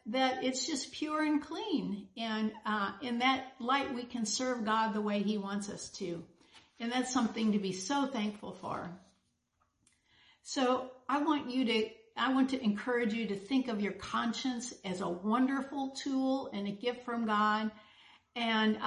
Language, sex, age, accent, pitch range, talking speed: English, female, 60-79, American, 210-260 Hz, 170 wpm